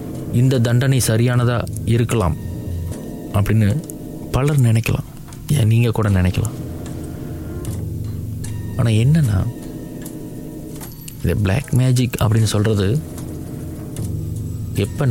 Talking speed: 70 wpm